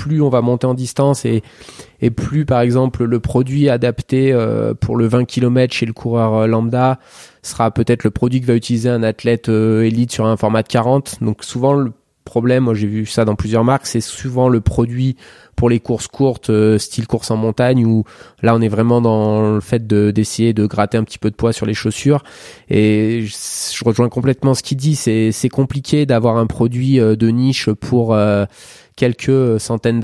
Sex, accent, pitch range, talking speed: male, French, 110-125 Hz, 195 wpm